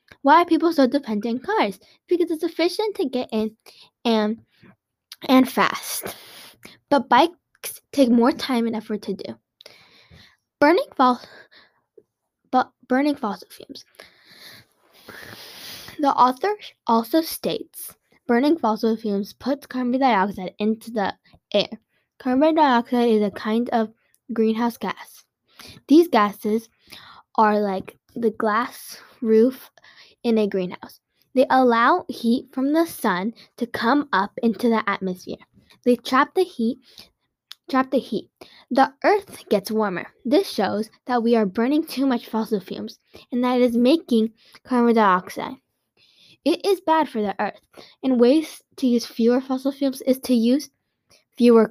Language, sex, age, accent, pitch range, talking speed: English, female, 10-29, American, 220-275 Hz, 135 wpm